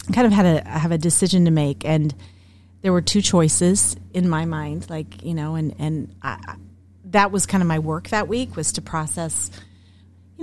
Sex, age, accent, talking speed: female, 30-49, American, 200 wpm